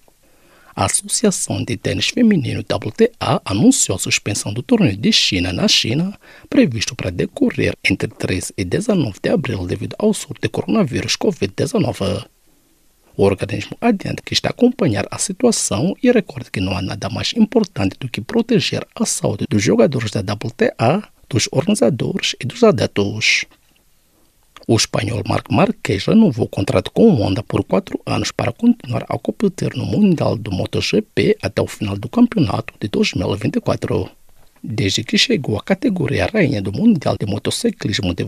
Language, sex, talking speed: English, male, 155 wpm